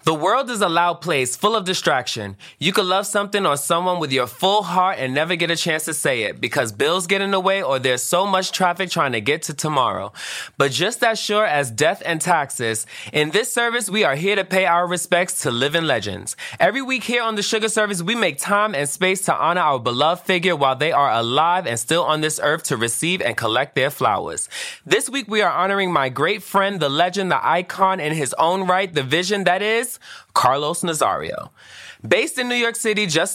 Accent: American